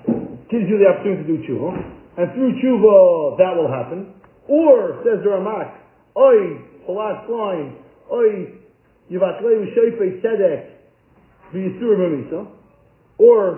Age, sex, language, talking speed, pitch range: 40-59, male, English, 125 wpm, 150-215 Hz